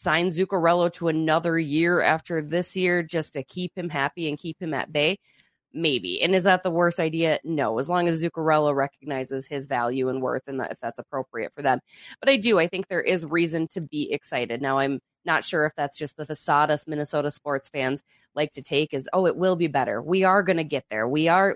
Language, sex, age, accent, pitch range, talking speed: English, female, 20-39, American, 140-170 Hz, 225 wpm